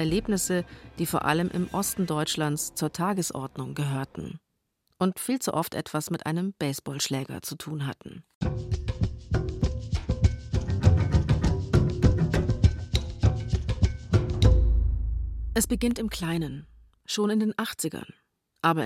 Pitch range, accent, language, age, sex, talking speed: 150-180 Hz, German, German, 40-59, female, 95 wpm